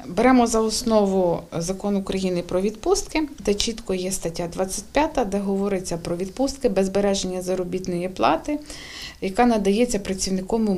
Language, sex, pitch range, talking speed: Ukrainian, female, 175-225 Hz, 120 wpm